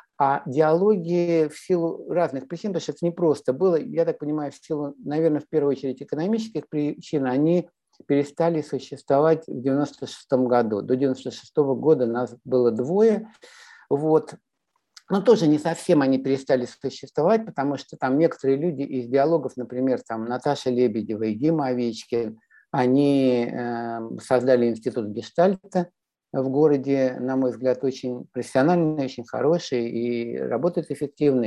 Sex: male